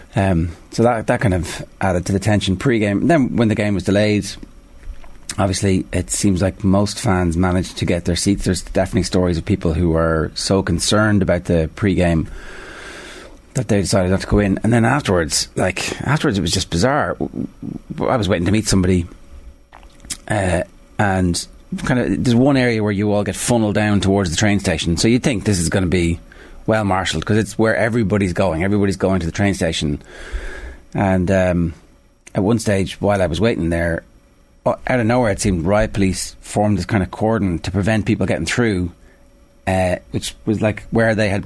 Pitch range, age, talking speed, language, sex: 90-110 Hz, 30-49, 195 wpm, English, male